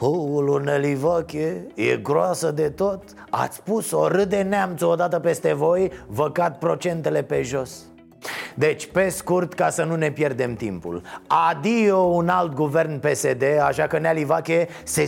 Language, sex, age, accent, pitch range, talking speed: Romanian, male, 30-49, native, 155-235 Hz, 145 wpm